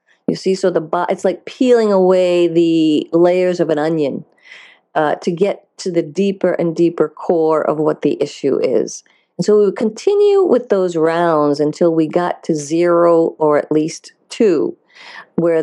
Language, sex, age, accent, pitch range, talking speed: English, female, 50-69, American, 155-185 Hz, 175 wpm